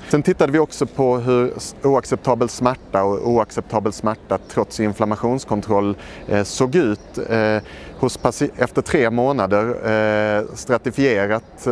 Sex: male